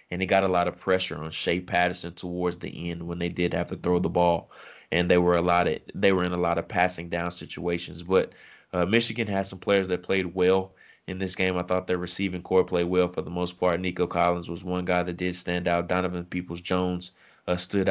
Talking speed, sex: 240 wpm, male